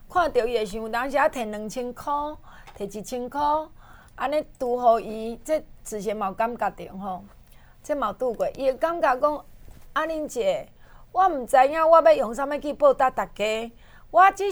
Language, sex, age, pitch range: Chinese, female, 30-49, 230-305 Hz